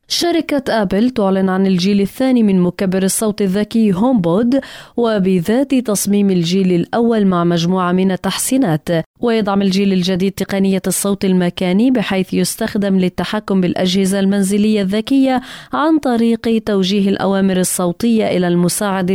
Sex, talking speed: female, 120 wpm